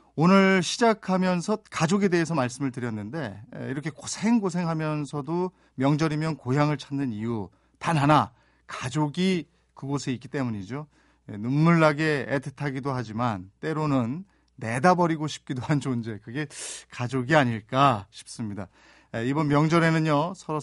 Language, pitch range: Korean, 120-160 Hz